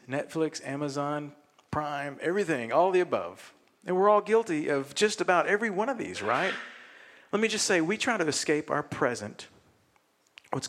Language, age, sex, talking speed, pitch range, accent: English, 50-69, male, 170 wpm, 110-150 Hz, American